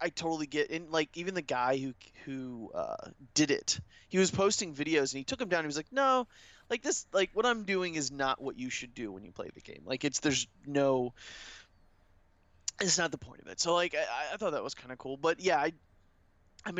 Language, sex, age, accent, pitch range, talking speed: English, male, 20-39, American, 125-160 Hz, 245 wpm